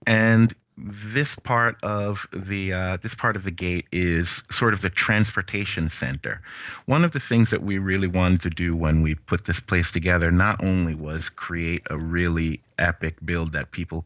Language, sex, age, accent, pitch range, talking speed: English, male, 30-49, American, 80-100 Hz, 185 wpm